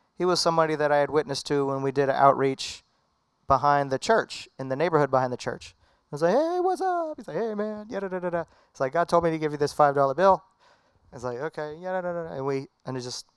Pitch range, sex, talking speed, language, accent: 125-145 Hz, male, 240 wpm, English, American